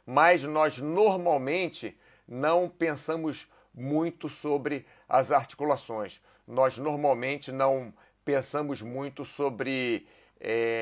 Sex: male